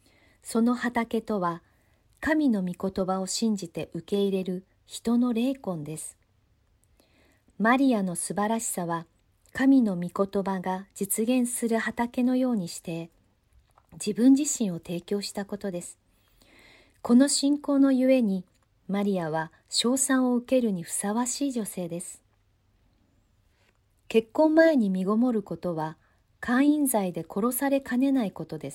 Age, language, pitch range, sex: 40-59, Japanese, 160-235 Hz, female